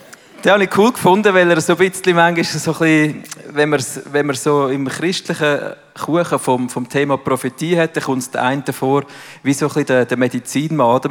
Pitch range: 130-170 Hz